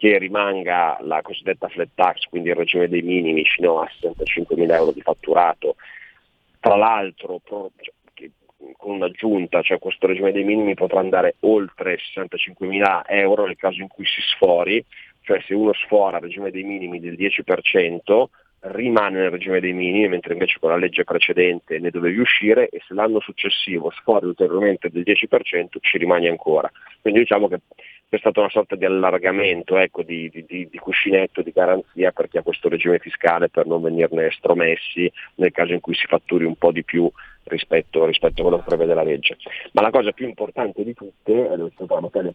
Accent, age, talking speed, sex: native, 30-49, 180 wpm, male